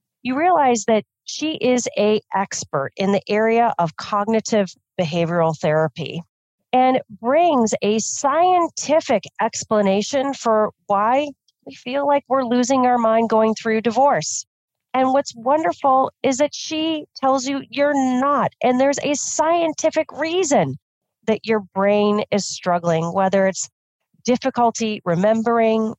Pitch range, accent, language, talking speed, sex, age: 170-245 Hz, American, English, 125 wpm, female, 40-59